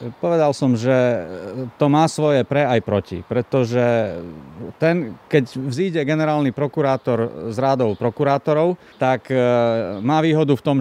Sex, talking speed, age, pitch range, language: male, 130 wpm, 40-59, 125-150 Hz, Slovak